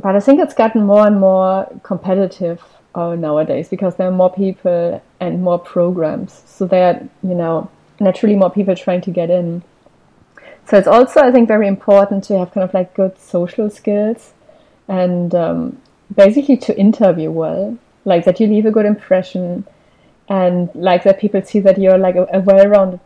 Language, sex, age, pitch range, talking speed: English, female, 30-49, 185-220 Hz, 180 wpm